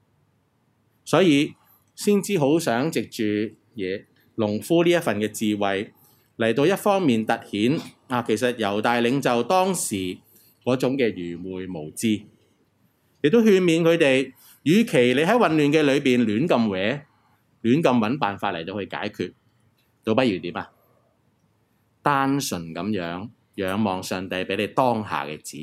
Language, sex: Chinese, male